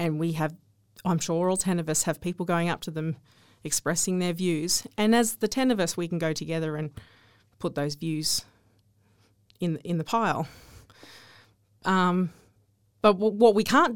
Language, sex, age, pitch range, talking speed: English, female, 30-49, 145-215 Hz, 175 wpm